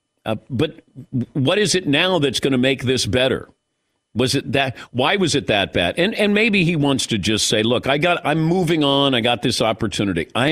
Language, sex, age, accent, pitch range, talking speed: English, male, 50-69, American, 125-175 Hz, 220 wpm